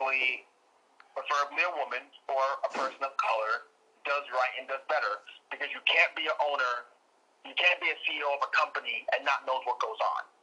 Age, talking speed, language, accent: 40-59, 195 wpm, English, American